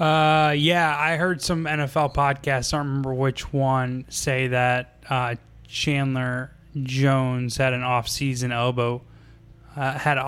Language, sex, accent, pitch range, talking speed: English, male, American, 115-135 Hz, 150 wpm